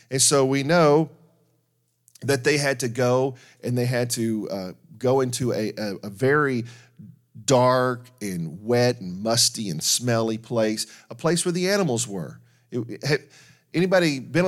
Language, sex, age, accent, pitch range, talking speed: English, male, 40-59, American, 120-165 Hz, 160 wpm